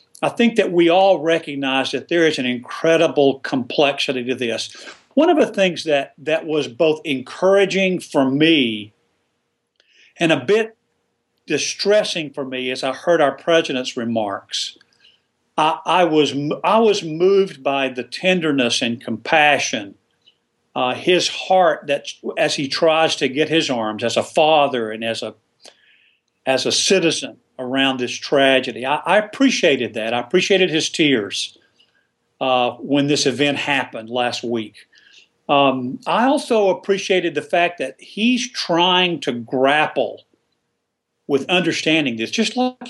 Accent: American